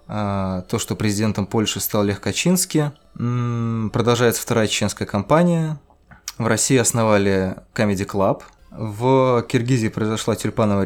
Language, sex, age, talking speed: Russian, male, 20-39, 110 wpm